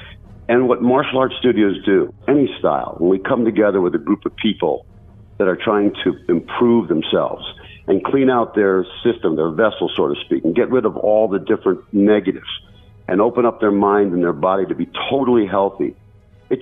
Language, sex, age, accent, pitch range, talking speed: English, male, 50-69, American, 100-125 Hz, 195 wpm